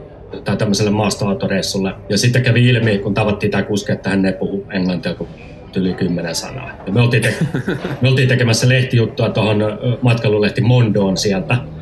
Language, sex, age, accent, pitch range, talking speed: Finnish, male, 30-49, native, 100-125 Hz, 155 wpm